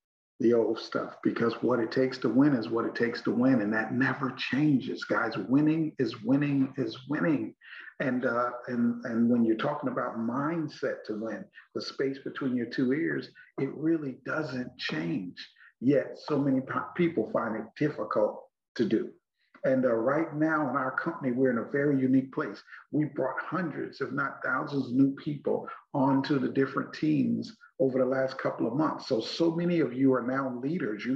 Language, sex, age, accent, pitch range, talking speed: English, male, 50-69, American, 130-165 Hz, 185 wpm